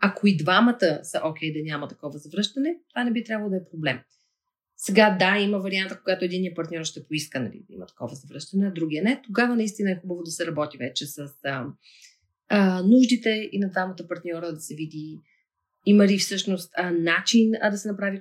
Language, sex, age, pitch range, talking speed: Bulgarian, female, 30-49, 165-220 Hz, 205 wpm